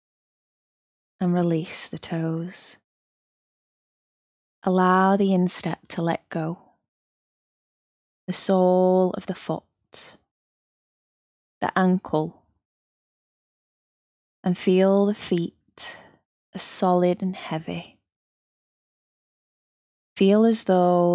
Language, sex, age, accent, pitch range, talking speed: English, female, 20-39, British, 165-185 Hz, 80 wpm